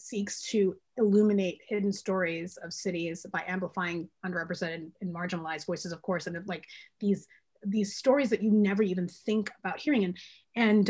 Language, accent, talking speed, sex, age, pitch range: English, American, 160 wpm, female, 30-49, 185-220 Hz